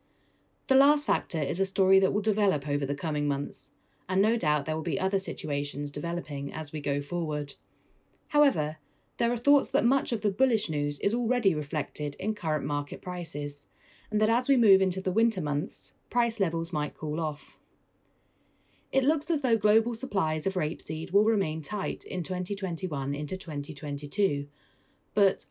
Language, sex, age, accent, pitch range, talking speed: English, female, 30-49, British, 145-210 Hz, 170 wpm